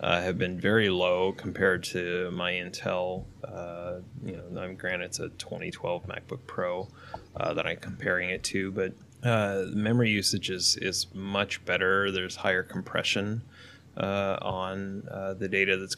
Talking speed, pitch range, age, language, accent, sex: 160 wpm, 90-100 Hz, 20-39, English, American, male